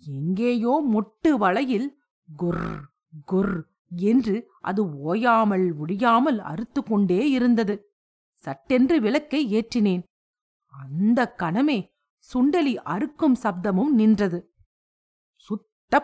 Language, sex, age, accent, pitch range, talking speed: Tamil, female, 50-69, native, 190-260 Hz, 80 wpm